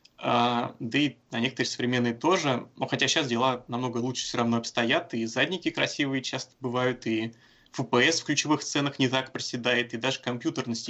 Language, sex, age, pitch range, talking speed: Russian, male, 20-39, 120-135 Hz, 175 wpm